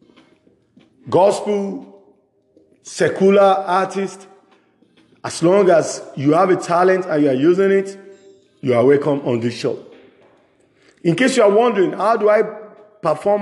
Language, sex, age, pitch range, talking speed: English, male, 50-69, 135-195 Hz, 135 wpm